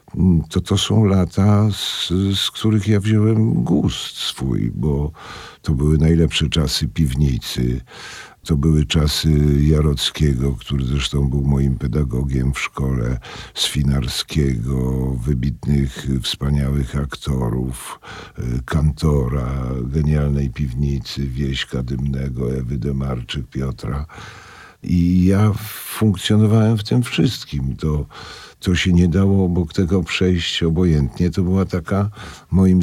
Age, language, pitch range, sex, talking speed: 50-69, Polish, 70-85 Hz, male, 110 wpm